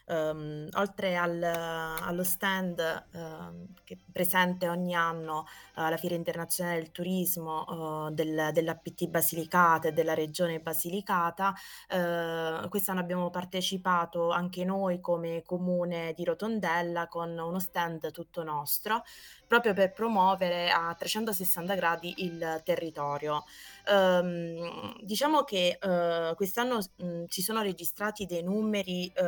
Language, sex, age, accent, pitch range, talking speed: Italian, female, 20-39, native, 165-190 Hz, 100 wpm